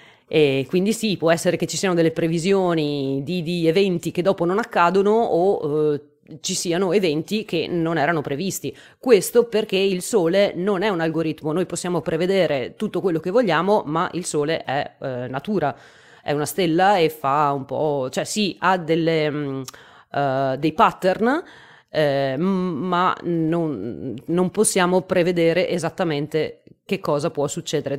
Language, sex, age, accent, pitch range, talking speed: Italian, female, 30-49, native, 150-195 Hz, 150 wpm